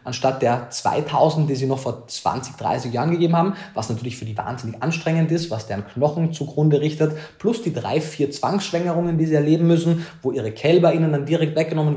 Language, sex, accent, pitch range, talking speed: German, male, German, 120-160 Hz, 200 wpm